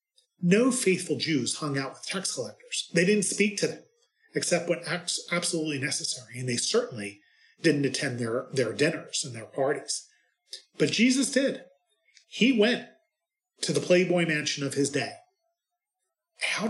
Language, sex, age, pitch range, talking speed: English, male, 40-59, 145-245 Hz, 145 wpm